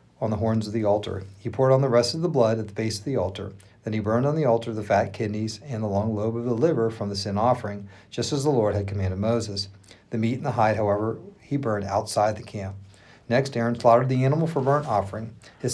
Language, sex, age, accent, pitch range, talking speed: English, male, 40-59, American, 105-125 Hz, 255 wpm